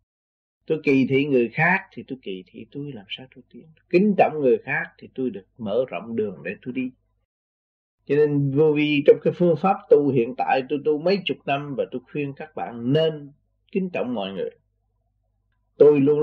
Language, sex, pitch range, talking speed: Vietnamese, male, 105-170 Hz, 205 wpm